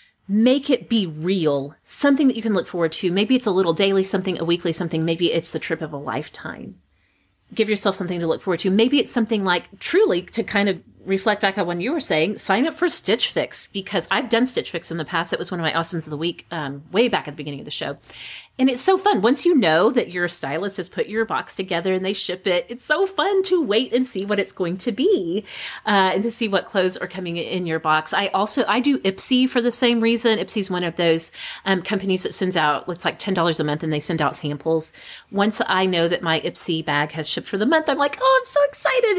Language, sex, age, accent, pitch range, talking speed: English, female, 30-49, American, 165-230 Hz, 260 wpm